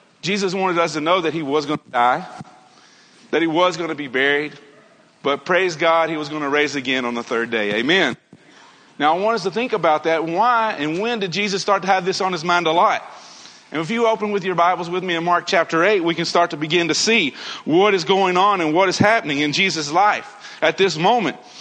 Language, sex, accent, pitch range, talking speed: English, male, American, 165-225 Hz, 245 wpm